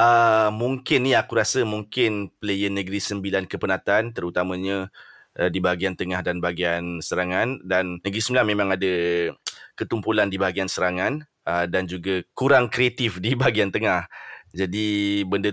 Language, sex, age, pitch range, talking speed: Malay, male, 20-39, 95-120 Hz, 145 wpm